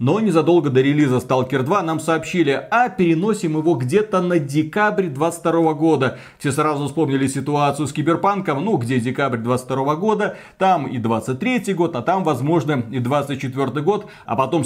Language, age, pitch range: Russian, 30-49, 135-180 Hz